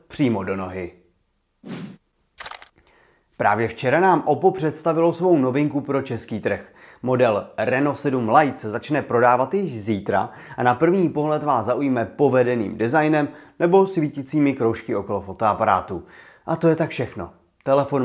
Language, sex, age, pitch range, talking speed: Czech, male, 30-49, 115-155 Hz, 135 wpm